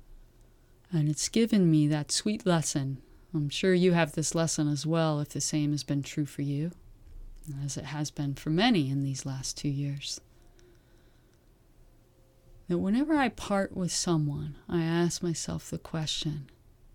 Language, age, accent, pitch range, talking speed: English, 30-49, American, 145-195 Hz, 160 wpm